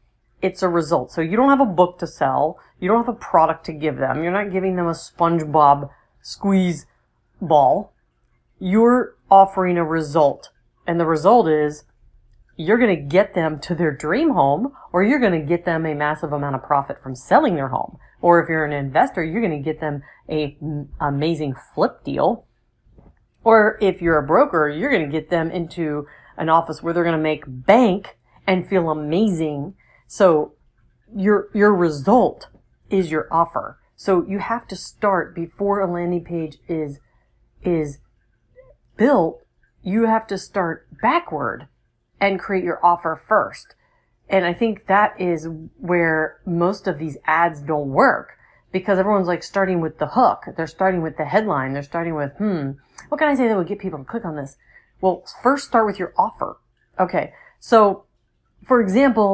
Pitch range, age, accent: 155-195 Hz, 40-59, American